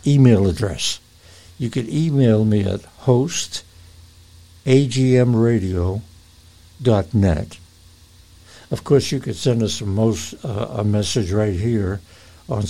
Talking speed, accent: 105 wpm, American